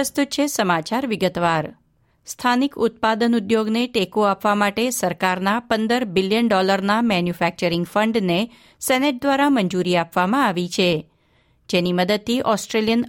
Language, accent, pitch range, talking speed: Gujarati, native, 180-235 Hz, 95 wpm